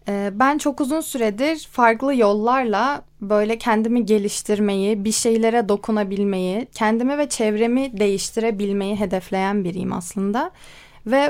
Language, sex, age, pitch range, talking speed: Turkish, female, 20-39, 210-265 Hz, 105 wpm